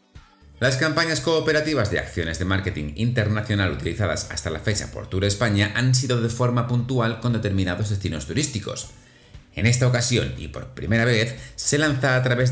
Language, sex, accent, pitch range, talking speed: Spanish, male, Spanish, 95-125 Hz, 170 wpm